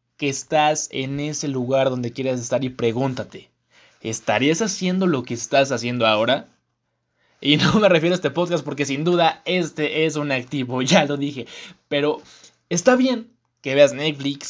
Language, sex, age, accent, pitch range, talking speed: Spanish, male, 20-39, Mexican, 130-170 Hz, 165 wpm